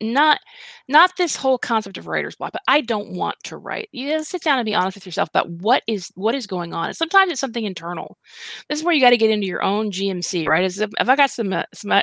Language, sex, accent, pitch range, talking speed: English, female, American, 180-240 Hz, 275 wpm